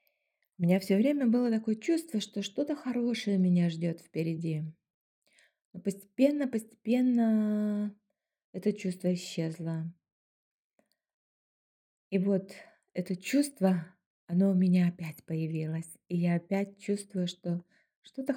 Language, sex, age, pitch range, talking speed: Russian, female, 20-39, 175-245 Hz, 110 wpm